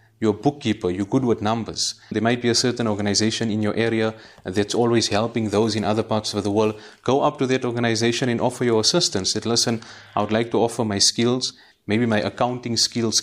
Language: English